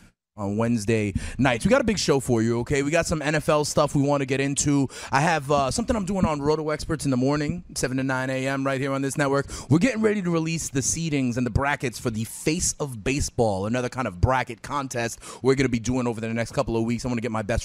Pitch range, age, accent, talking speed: 115-150 Hz, 30-49, American, 270 wpm